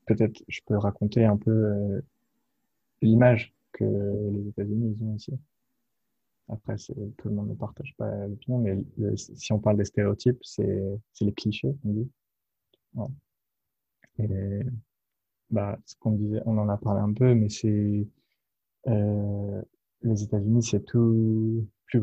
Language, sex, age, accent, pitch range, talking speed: French, male, 20-39, French, 105-120 Hz, 150 wpm